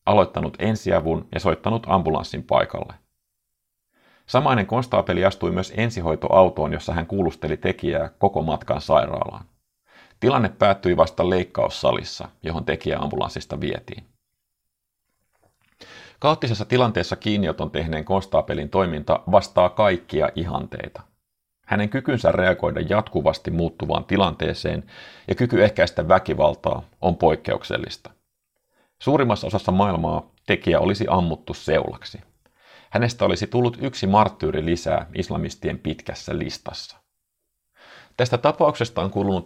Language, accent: Finnish, native